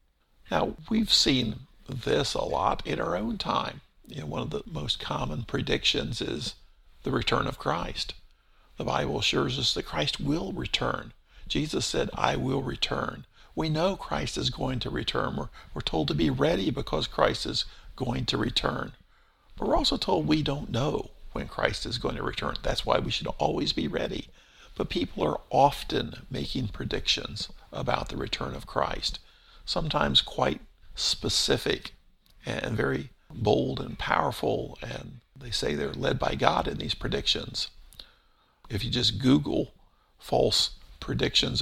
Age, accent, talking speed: 50-69, American, 155 wpm